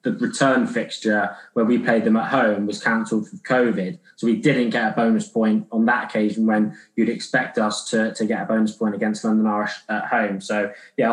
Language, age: English, 20-39